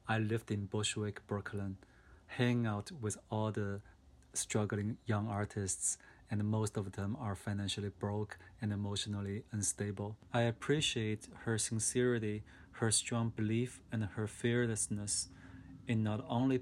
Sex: male